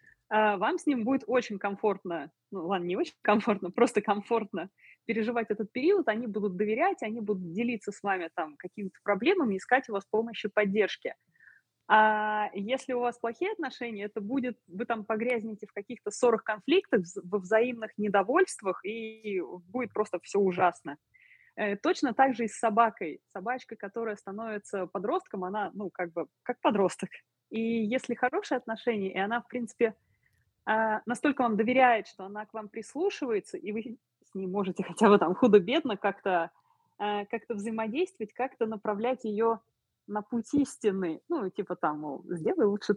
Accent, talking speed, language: native, 150 wpm, Russian